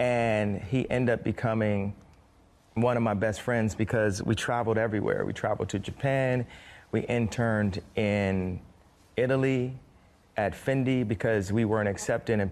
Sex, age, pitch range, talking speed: male, 30-49, 95-115 Hz, 140 wpm